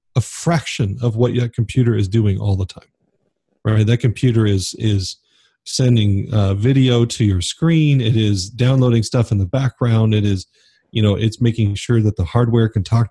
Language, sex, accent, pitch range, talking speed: English, male, American, 100-120 Hz, 190 wpm